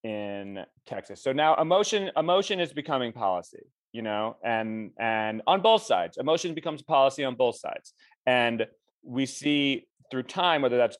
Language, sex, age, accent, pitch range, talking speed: English, male, 30-49, American, 115-155 Hz, 160 wpm